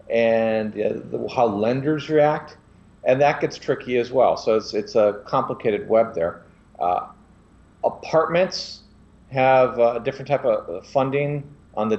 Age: 40-59